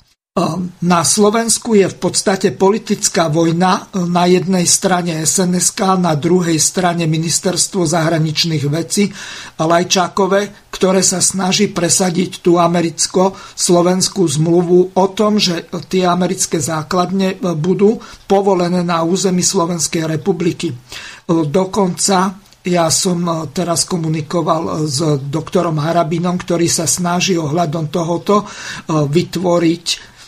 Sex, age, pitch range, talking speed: male, 50-69, 170-190 Hz, 100 wpm